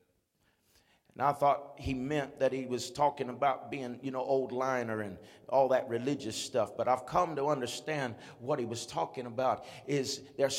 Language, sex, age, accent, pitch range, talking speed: English, male, 50-69, American, 125-165 Hz, 180 wpm